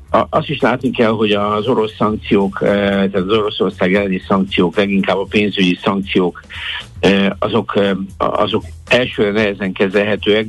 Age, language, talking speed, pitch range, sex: 60-79, Hungarian, 125 wpm, 95-105 Hz, male